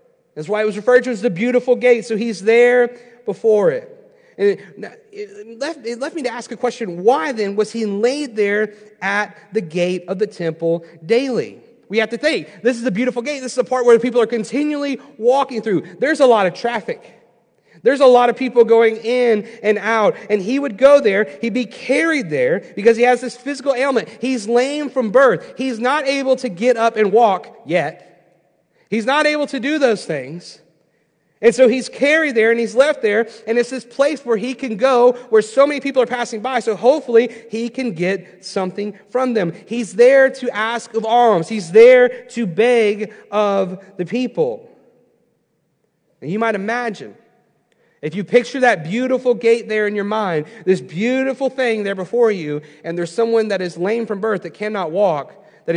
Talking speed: 195 wpm